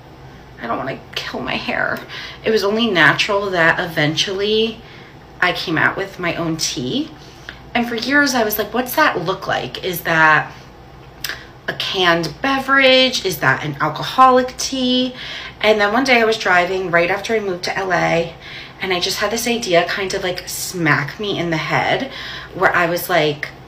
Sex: female